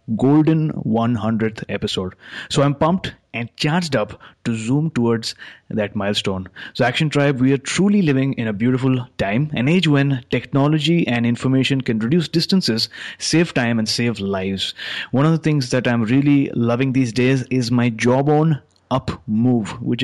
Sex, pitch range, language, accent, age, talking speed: male, 115-145 Hz, English, Indian, 30-49, 170 wpm